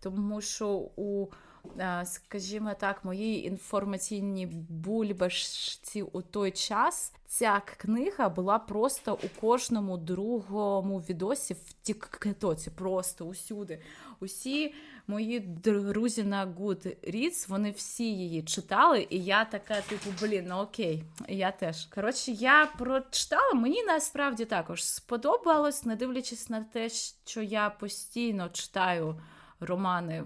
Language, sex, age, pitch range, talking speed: Ukrainian, female, 20-39, 190-240 Hz, 115 wpm